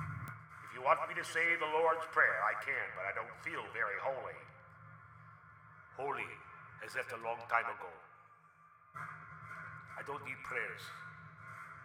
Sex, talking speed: male, 140 wpm